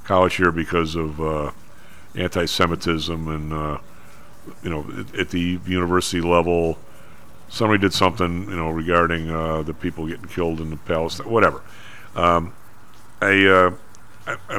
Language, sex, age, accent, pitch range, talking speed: English, male, 50-69, American, 80-100 Hz, 140 wpm